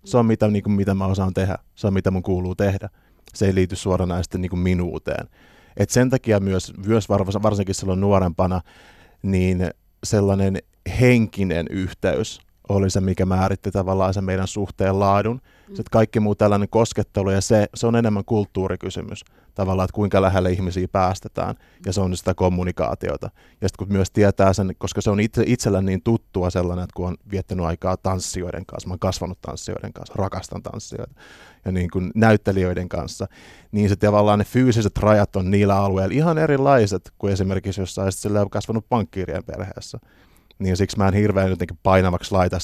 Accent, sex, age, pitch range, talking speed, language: native, male, 30-49, 95-105 Hz, 175 wpm, Finnish